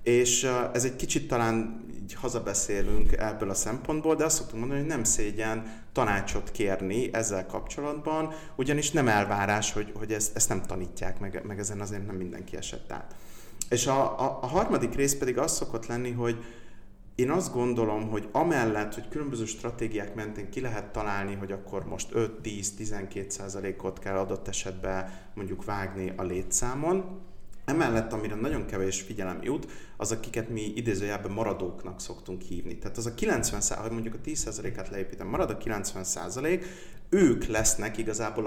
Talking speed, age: 155 wpm, 30-49